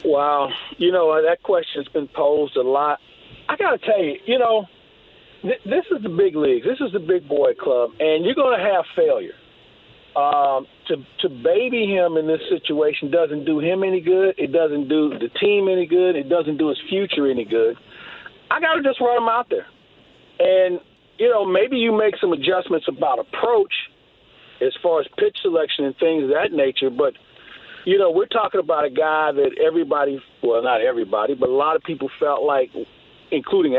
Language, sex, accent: English, male, American